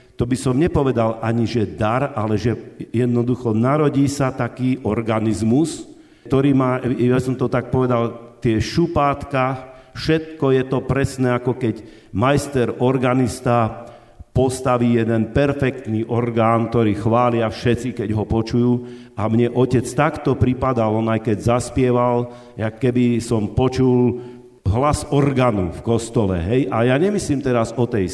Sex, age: male, 50-69